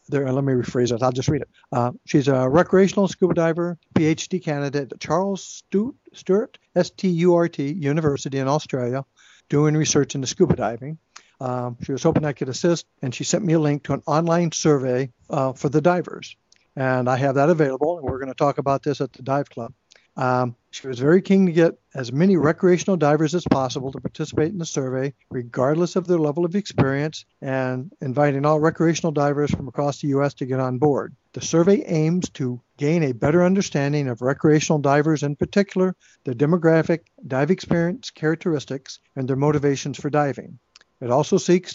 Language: English